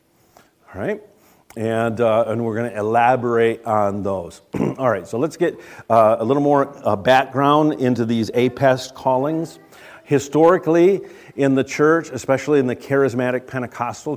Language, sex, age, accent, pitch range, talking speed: English, male, 50-69, American, 105-130 Hz, 150 wpm